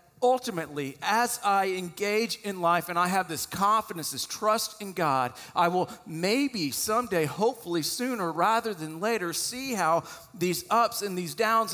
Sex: male